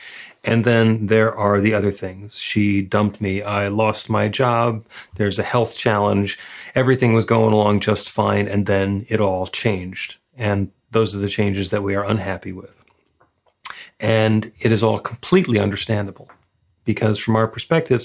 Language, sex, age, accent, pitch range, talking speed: English, male, 40-59, American, 100-110 Hz, 165 wpm